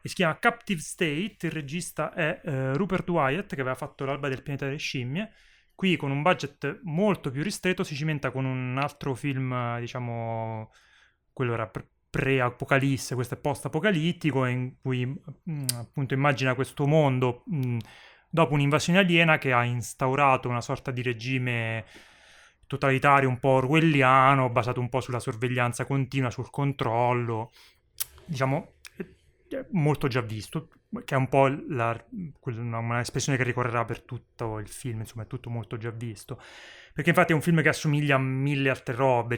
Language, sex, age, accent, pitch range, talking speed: Italian, male, 30-49, native, 125-145 Hz, 155 wpm